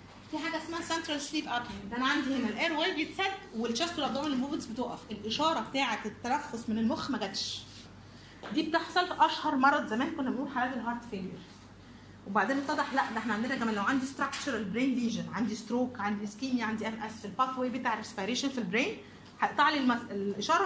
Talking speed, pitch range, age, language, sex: 185 wpm, 210-275 Hz, 30-49, Arabic, female